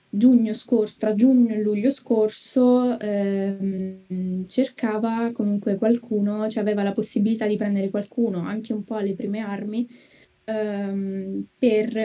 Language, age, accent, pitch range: Italian, 10-29, native, 195-225 Hz